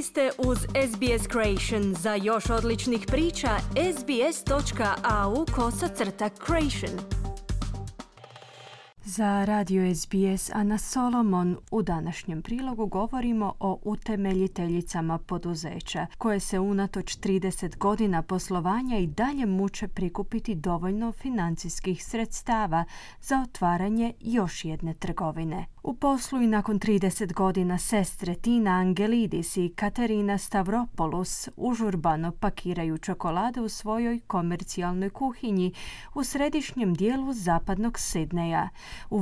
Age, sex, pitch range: 30-49, female, 180-230 Hz